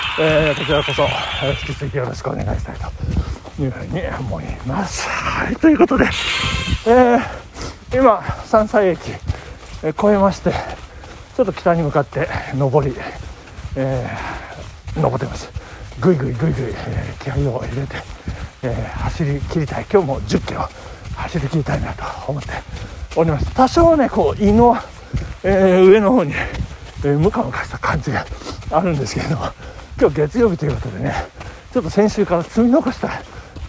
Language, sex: Japanese, male